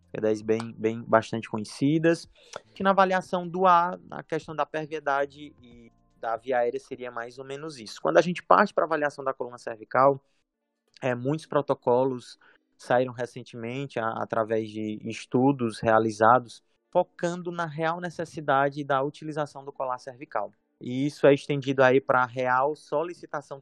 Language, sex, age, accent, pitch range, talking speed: Portuguese, male, 20-39, Brazilian, 120-155 Hz, 155 wpm